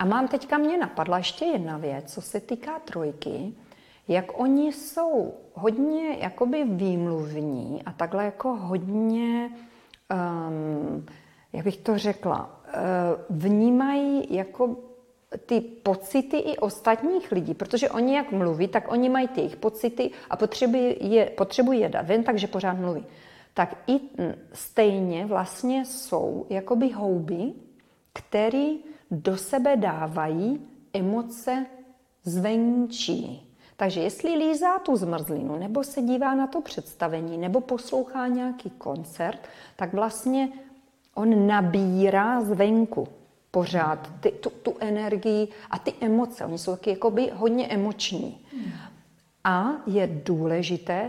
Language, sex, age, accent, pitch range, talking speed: Czech, female, 40-59, native, 185-260 Hz, 120 wpm